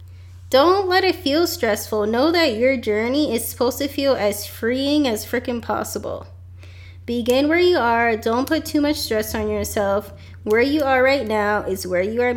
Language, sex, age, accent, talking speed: English, female, 20-39, American, 185 wpm